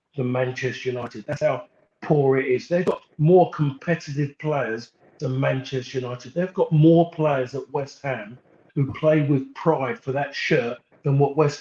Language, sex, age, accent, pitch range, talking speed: English, male, 50-69, British, 135-165 Hz, 170 wpm